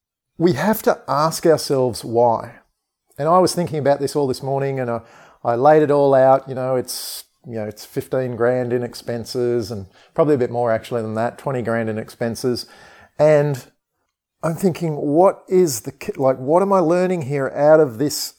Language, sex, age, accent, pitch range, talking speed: English, male, 40-59, Australian, 125-155 Hz, 195 wpm